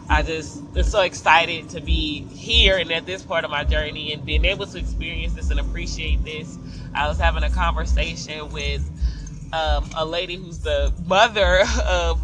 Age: 20-39